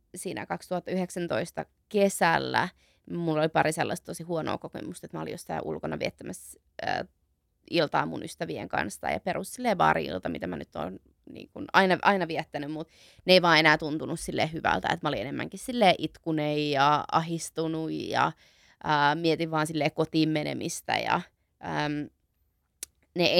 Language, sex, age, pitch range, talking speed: Finnish, female, 20-39, 150-180 Hz, 155 wpm